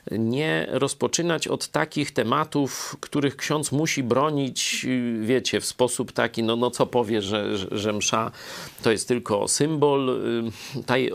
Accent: native